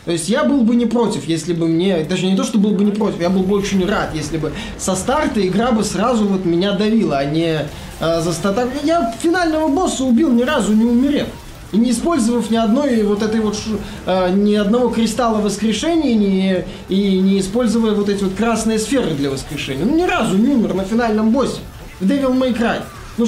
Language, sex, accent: Russian, male, native